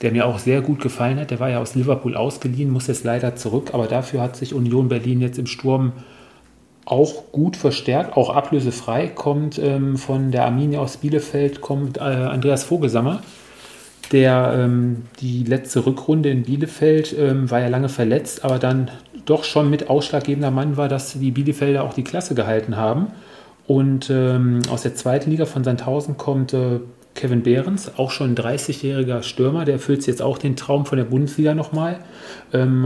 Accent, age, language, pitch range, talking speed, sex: German, 40-59, German, 125-145 Hz, 180 wpm, male